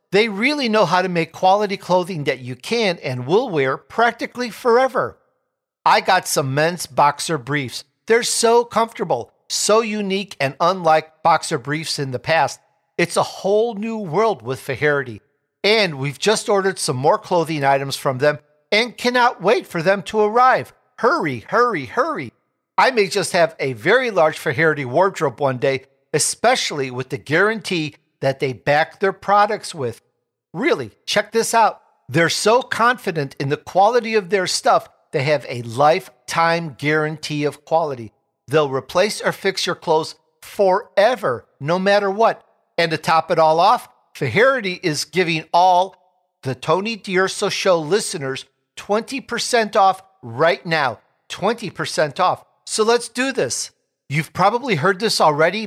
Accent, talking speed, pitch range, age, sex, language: American, 155 wpm, 150-210 Hz, 50-69, male, English